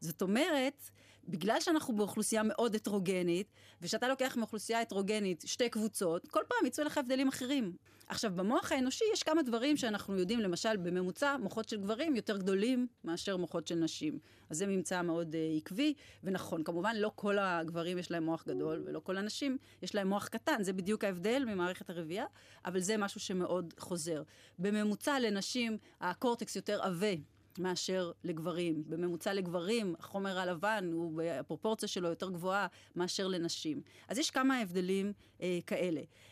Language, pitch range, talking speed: Hebrew, 180-245 Hz, 155 wpm